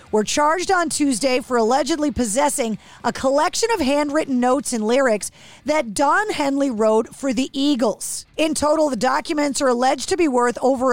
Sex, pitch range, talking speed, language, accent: female, 235-300 Hz, 170 wpm, English, American